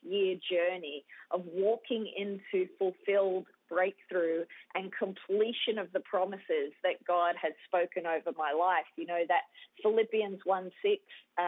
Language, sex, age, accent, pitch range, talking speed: English, female, 30-49, Australian, 185-215 Hz, 130 wpm